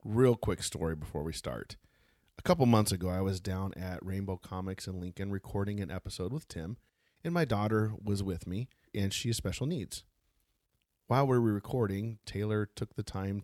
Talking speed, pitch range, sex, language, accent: 190 wpm, 95-115 Hz, male, English, American